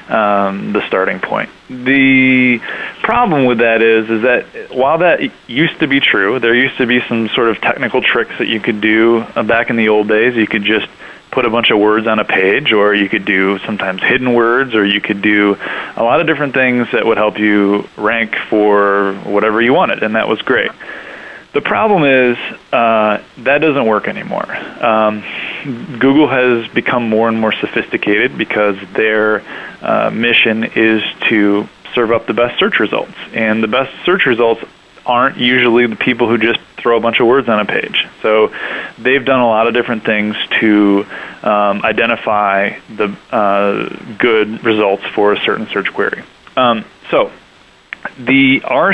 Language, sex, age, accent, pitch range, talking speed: English, male, 20-39, American, 105-125 Hz, 180 wpm